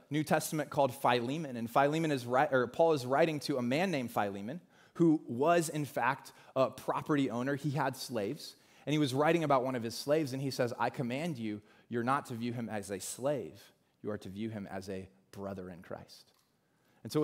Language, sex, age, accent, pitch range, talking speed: English, male, 30-49, American, 130-180 Hz, 220 wpm